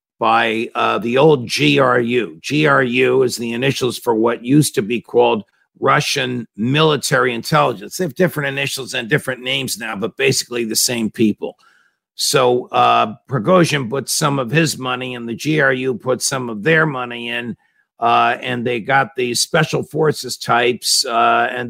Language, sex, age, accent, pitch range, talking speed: English, male, 50-69, American, 120-145 Hz, 165 wpm